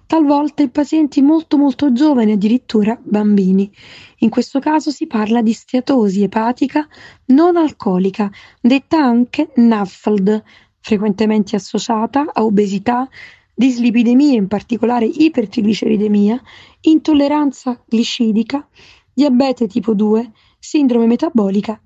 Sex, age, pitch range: female, 20-39, 210-270 Hz